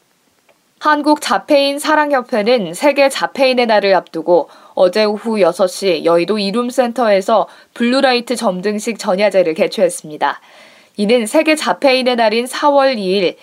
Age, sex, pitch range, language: 20-39, female, 200-265 Hz, Korean